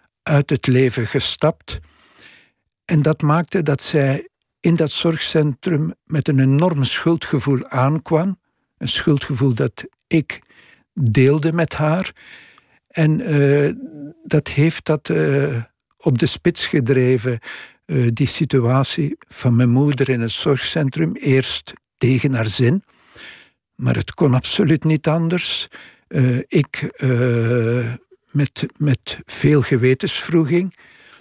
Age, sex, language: 60-79, male, Dutch